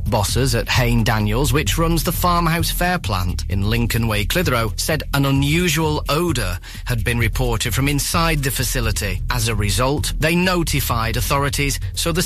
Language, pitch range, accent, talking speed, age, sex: English, 105-140 Hz, British, 160 wpm, 30-49, male